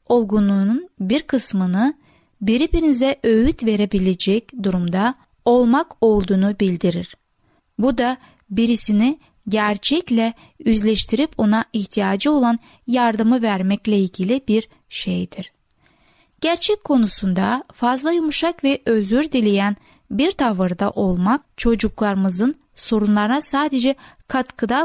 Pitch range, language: 200-260 Hz, Turkish